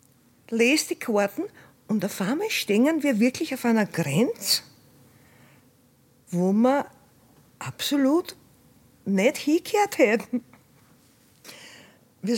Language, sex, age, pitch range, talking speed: German, female, 50-69, 170-255 Hz, 90 wpm